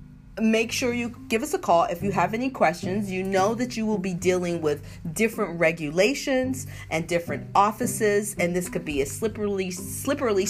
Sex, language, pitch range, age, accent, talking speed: female, English, 160-225 Hz, 40-59, American, 185 wpm